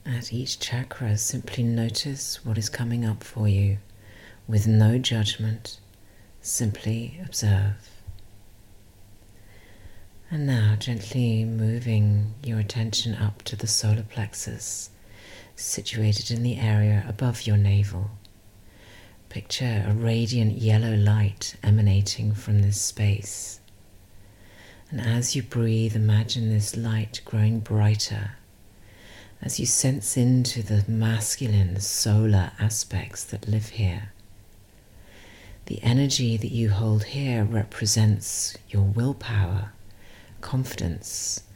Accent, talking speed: British, 105 wpm